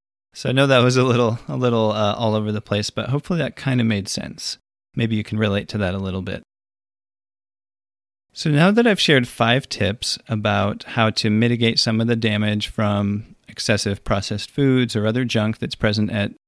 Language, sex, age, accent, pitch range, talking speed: English, male, 30-49, American, 100-120 Hz, 200 wpm